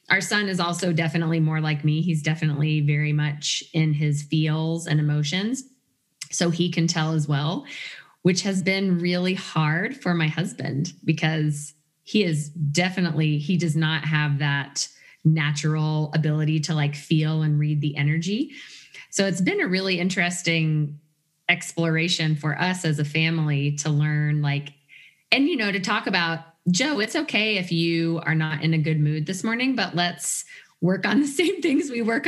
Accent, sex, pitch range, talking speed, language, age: American, female, 155-190 Hz, 170 wpm, English, 20-39